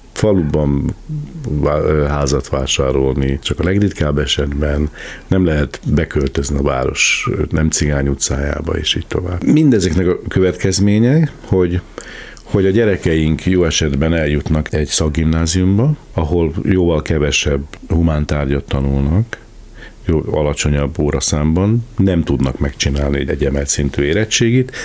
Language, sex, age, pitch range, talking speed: Hungarian, male, 60-79, 70-95 Hz, 105 wpm